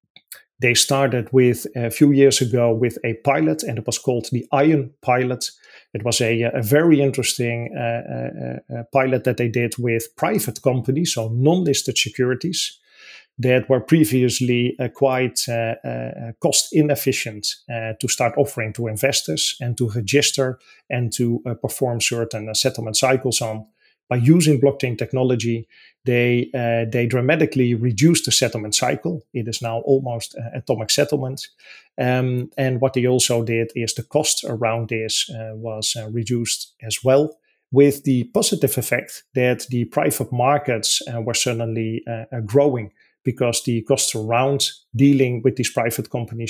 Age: 40-59